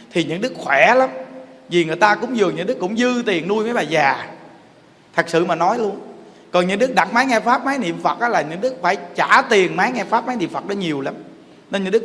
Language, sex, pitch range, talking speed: Vietnamese, male, 180-235 Hz, 265 wpm